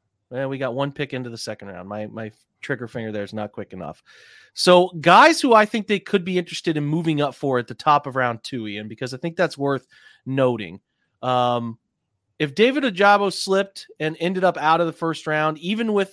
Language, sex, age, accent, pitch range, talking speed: English, male, 30-49, American, 120-165 Hz, 220 wpm